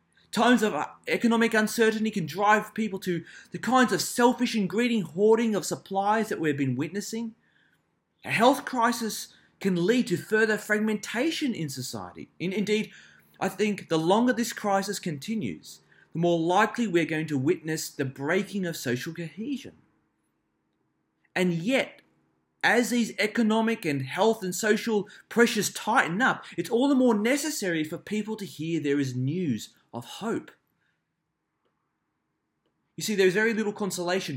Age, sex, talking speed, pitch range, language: 30-49, male, 145 wpm, 165-220 Hz, English